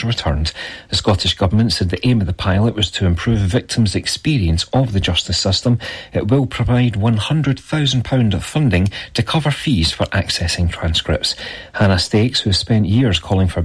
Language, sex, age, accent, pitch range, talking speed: English, male, 40-59, British, 95-120 Hz, 170 wpm